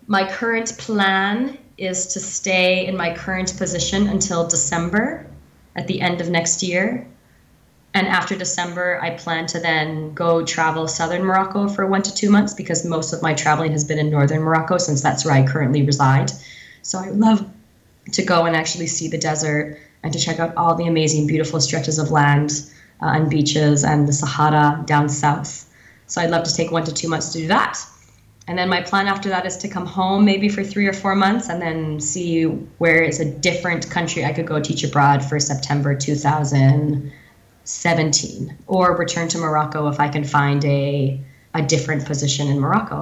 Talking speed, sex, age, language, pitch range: 190 wpm, female, 20-39, English, 150-185 Hz